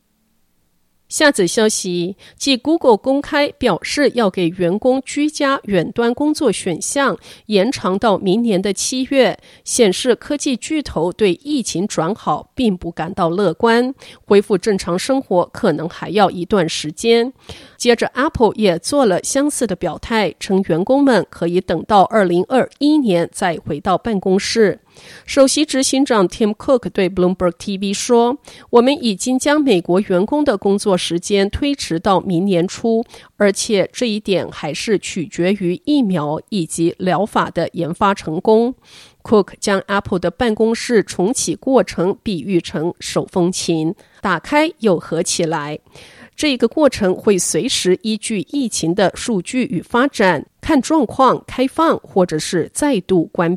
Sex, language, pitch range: female, Chinese, 180-250 Hz